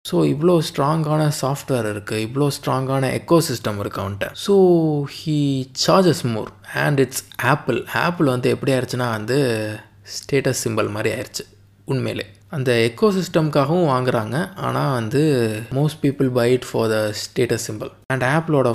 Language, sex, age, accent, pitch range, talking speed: Tamil, male, 20-39, native, 115-145 Hz, 130 wpm